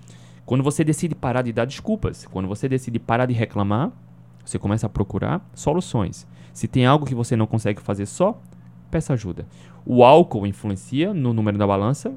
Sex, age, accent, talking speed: male, 20-39, Brazilian, 180 wpm